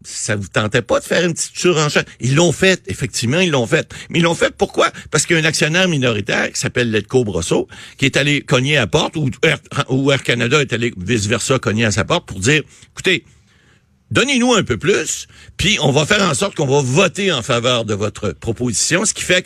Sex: male